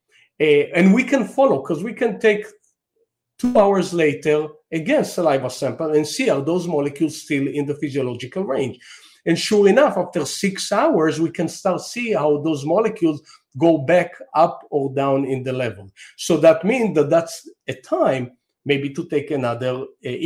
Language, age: English, 50-69